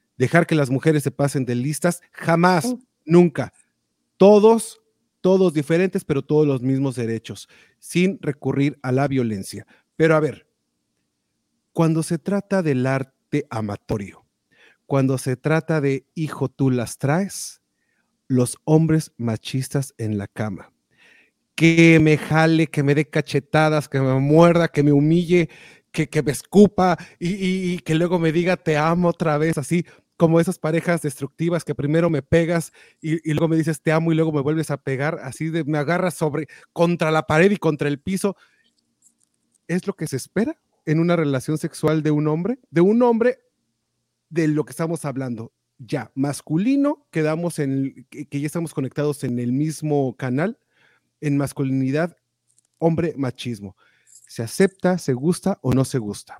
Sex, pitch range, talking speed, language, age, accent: male, 135-170 Hz, 160 wpm, Spanish, 40-59, Mexican